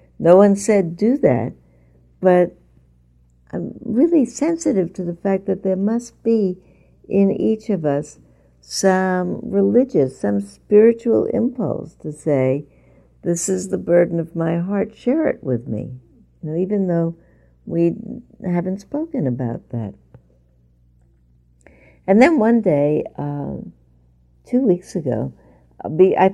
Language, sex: English, female